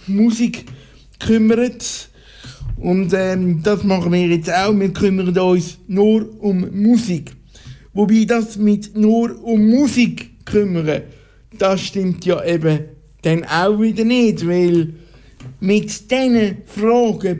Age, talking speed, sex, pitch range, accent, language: 60-79, 115 wpm, male, 180-220 Hz, Austrian, German